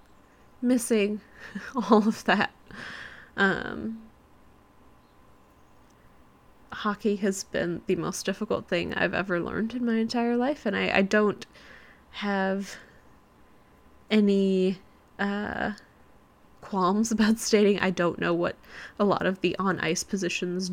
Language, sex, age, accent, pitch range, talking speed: English, female, 10-29, American, 180-225 Hz, 115 wpm